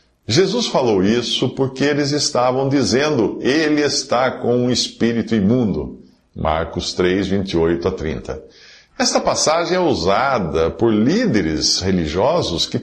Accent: Brazilian